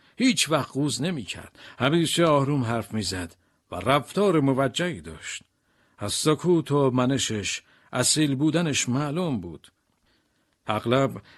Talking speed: 105 wpm